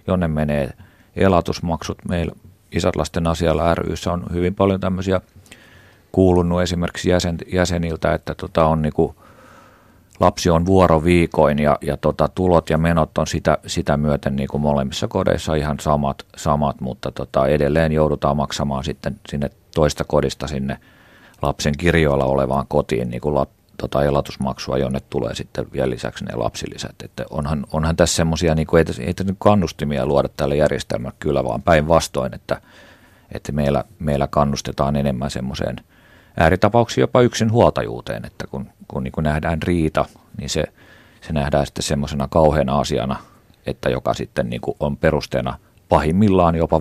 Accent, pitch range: native, 70-90 Hz